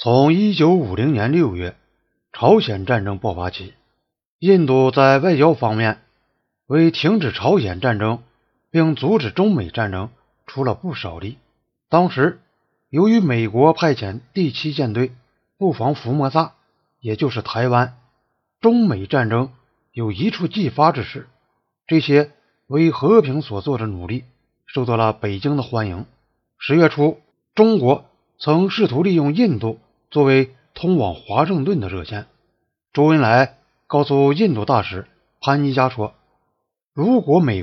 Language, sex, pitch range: Chinese, male, 115-160 Hz